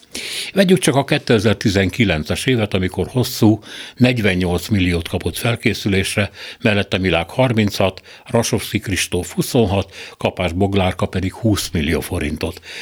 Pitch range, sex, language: 90-115 Hz, male, Hungarian